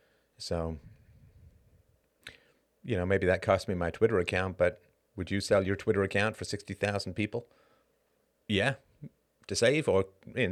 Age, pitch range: 30-49, 90-110 Hz